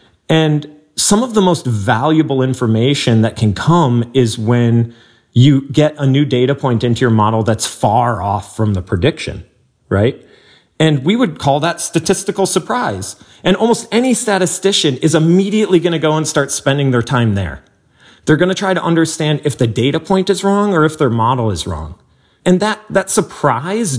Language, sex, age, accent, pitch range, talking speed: English, male, 40-59, American, 105-150 Hz, 175 wpm